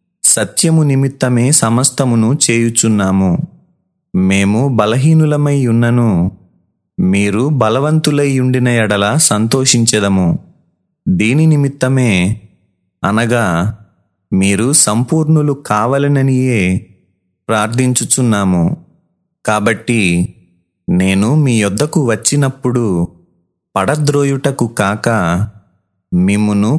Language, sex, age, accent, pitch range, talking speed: Telugu, male, 30-49, native, 105-145 Hz, 55 wpm